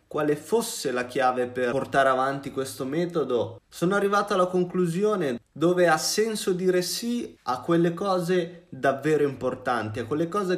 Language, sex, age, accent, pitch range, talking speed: Italian, male, 20-39, native, 125-175 Hz, 145 wpm